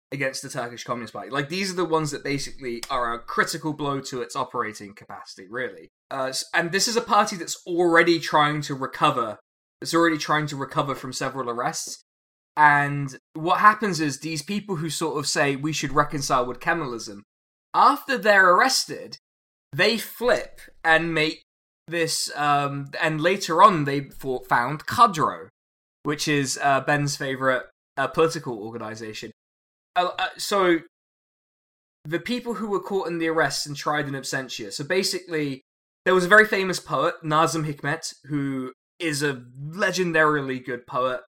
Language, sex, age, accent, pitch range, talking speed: English, male, 20-39, British, 130-165 Hz, 155 wpm